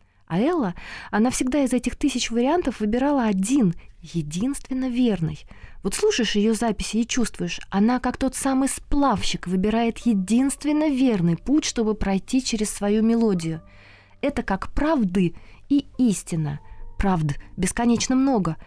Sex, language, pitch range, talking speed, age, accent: female, Russian, 170-240 Hz, 130 wpm, 20-39, native